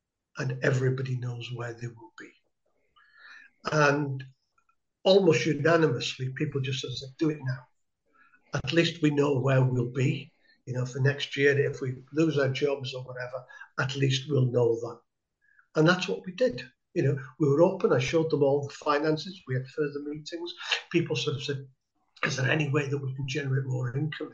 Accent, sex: British, male